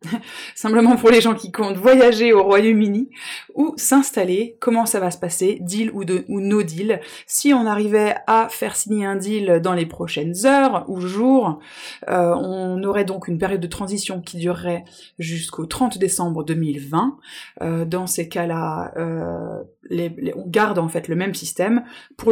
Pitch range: 175-215 Hz